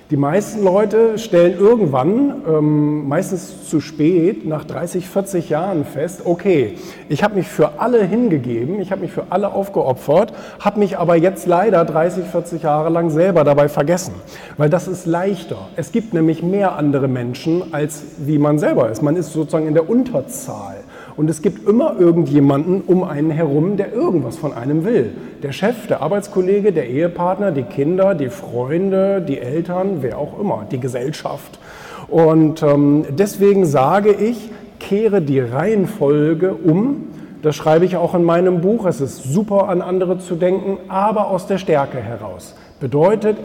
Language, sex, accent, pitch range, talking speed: German, male, German, 145-195 Hz, 165 wpm